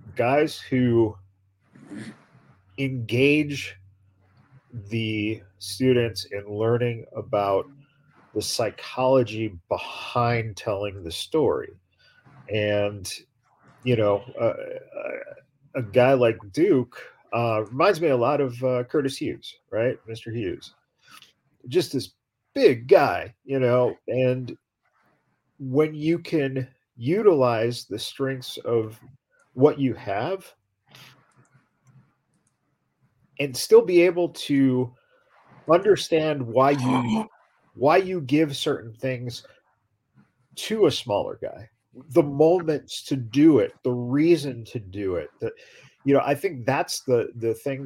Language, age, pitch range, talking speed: English, 40-59, 115-145 Hz, 110 wpm